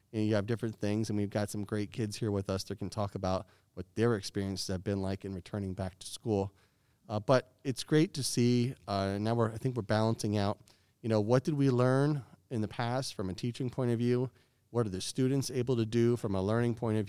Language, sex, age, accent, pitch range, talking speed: English, male, 40-59, American, 100-120 Hz, 240 wpm